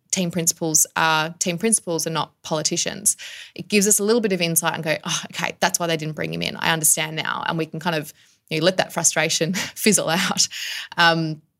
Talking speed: 225 wpm